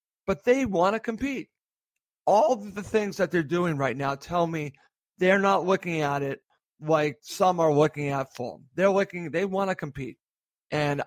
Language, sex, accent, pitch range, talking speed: English, male, American, 155-195 Hz, 180 wpm